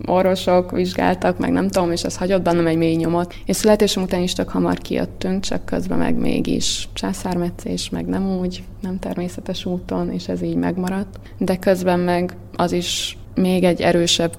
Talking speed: 175 wpm